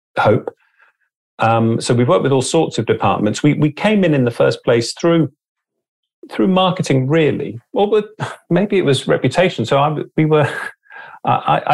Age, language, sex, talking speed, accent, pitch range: 30-49, English, male, 170 wpm, British, 100-125 Hz